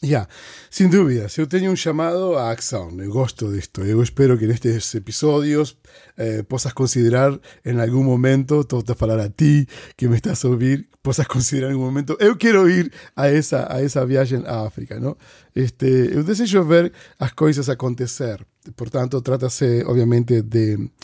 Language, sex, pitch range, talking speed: Portuguese, male, 115-145 Hz, 180 wpm